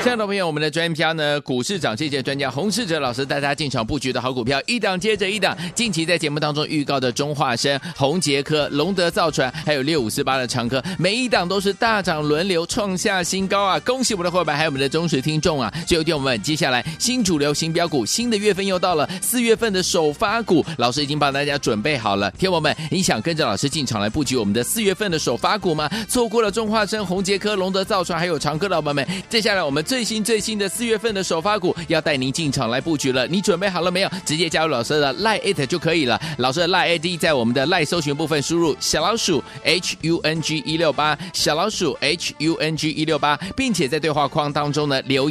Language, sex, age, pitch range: Chinese, male, 30-49, 140-190 Hz